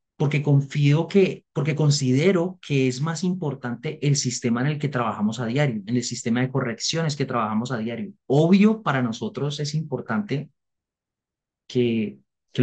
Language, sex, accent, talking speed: Spanish, male, Colombian, 155 wpm